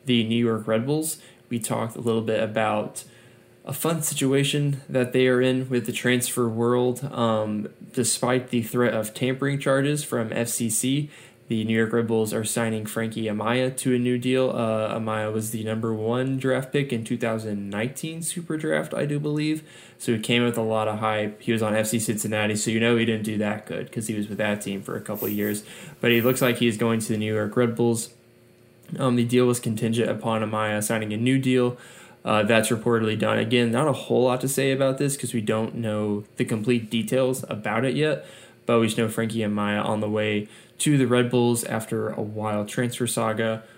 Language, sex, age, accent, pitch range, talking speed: English, male, 10-29, American, 110-125 Hz, 215 wpm